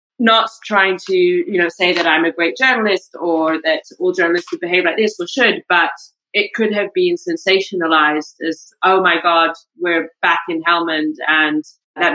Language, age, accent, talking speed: English, 30-49, British, 185 wpm